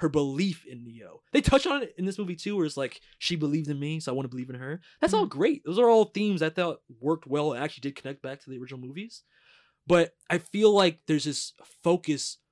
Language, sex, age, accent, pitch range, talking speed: English, male, 20-39, American, 140-180 Hz, 255 wpm